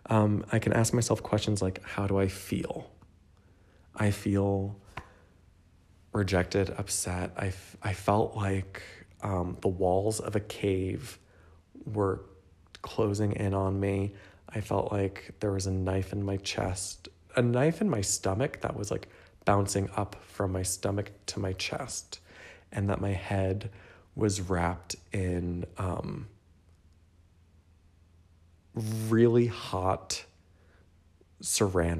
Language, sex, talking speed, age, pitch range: English, male, 125 wpm, 20-39, 90-110 Hz